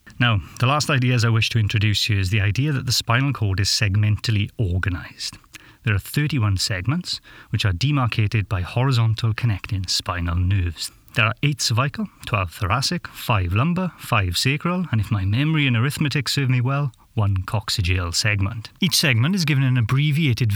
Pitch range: 105-135 Hz